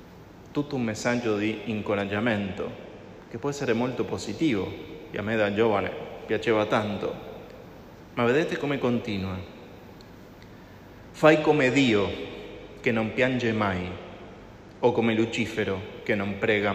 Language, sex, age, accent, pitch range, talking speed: Italian, male, 30-49, Argentinian, 100-125 Hz, 125 wpm